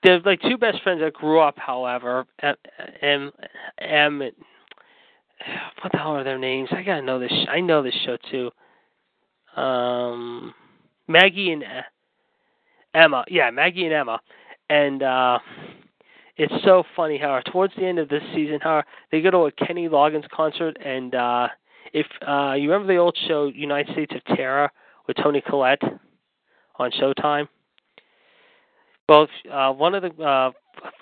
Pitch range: 135-175 Hz